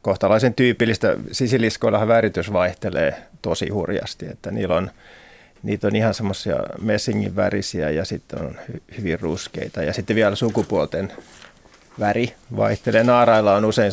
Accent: native